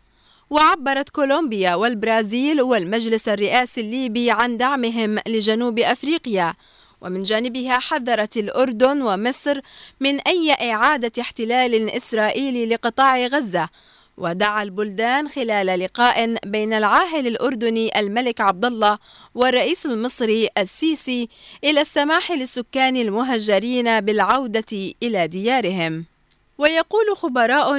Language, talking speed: Arabic, 95 wpm